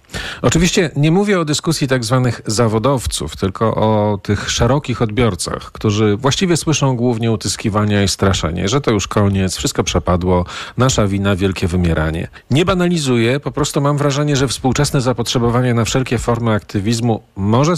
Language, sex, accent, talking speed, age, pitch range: Polish, male, native, 150 wpm, 40-59, 105-130 Hz